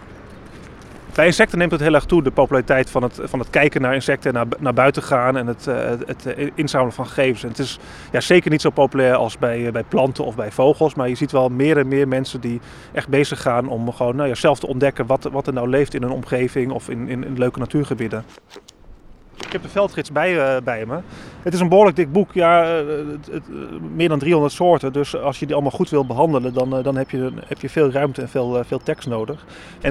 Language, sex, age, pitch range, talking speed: Dutch, male, 30-49, 125-150 Hz, 215 wpm